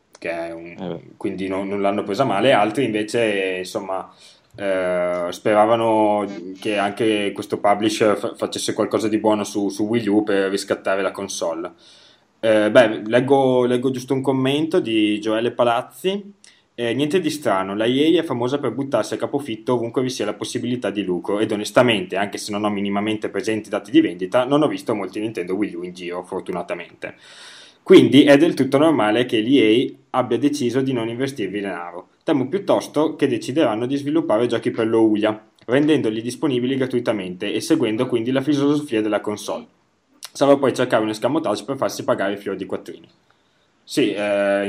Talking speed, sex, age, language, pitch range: 170 wpm, male, 20-39, English, 100-130 Hz